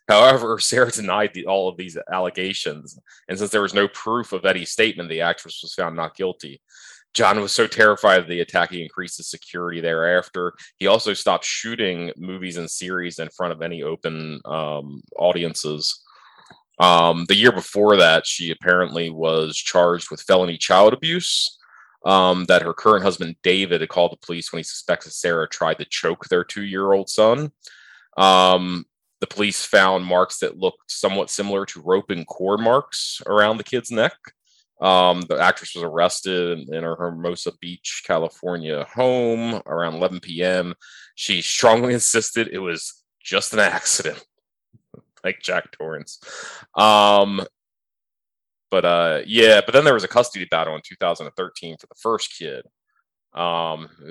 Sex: male